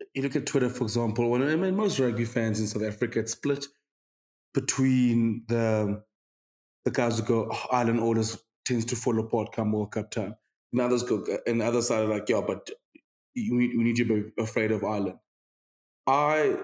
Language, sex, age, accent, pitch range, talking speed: English, male, 20-39, South African, 110-125 Hz, 195 wpm